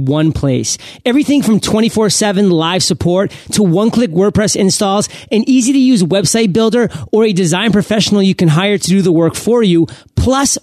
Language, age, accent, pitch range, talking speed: English, 40-59, American, 165-215 Hz, 185 wpm